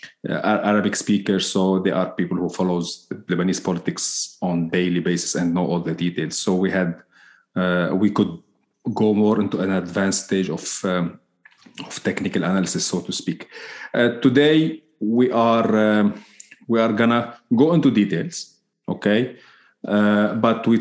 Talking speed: 155 wpm